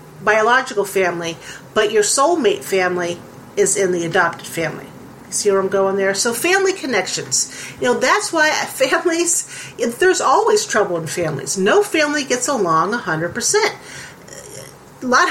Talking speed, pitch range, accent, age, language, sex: 140 wpm, 180-285 Hz, American, 40-59, English, female